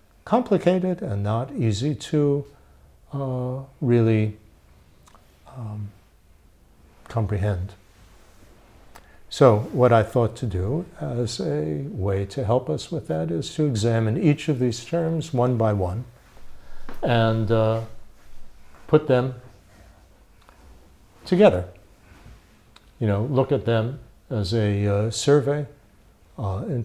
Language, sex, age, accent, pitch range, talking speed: English, male, 60-79, American, 100-130 Hz, 110 wpm